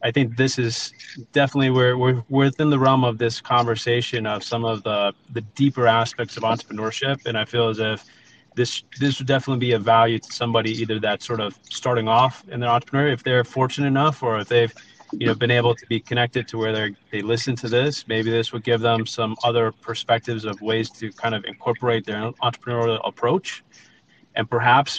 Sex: male